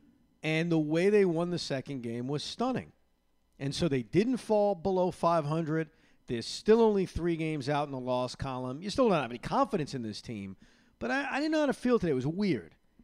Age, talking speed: 50-69, 220 wpm